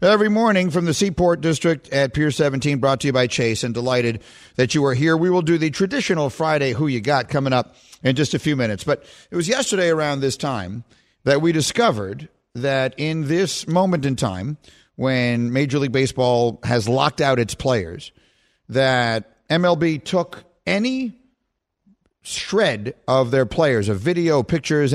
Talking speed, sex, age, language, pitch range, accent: 175 wpm, male, 50-69, English, 120-160 Hz, American